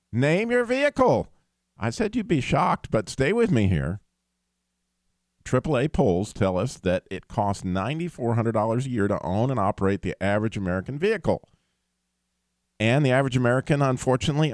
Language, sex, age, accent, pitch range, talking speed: English, male, 50-69, American, 85-135 Hz, 150 wpm